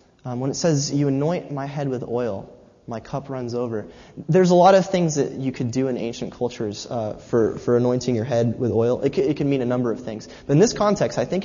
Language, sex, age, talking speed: English, male, 20-39, 255 wpm